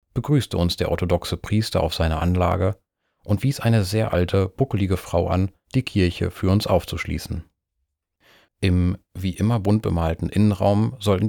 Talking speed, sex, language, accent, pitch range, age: 150 wpm, male, German, German, 85-110 Hz, 30-49